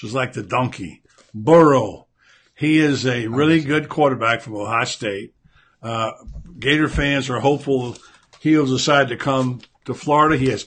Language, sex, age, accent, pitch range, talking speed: English, male, 60-79, American, 110-145 Hz, 150 wpm